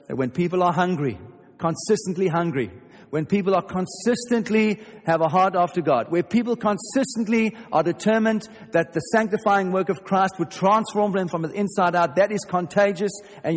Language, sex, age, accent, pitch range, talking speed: English, male, 50-69, German, 135-195 Hz, 165 wpm